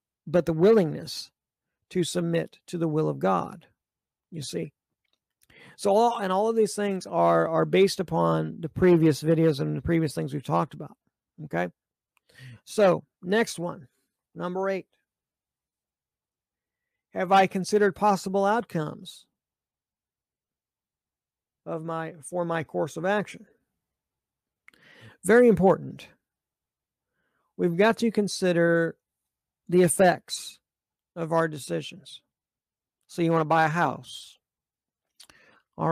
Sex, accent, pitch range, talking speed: male, American, 160-190 Hz, 115 wpm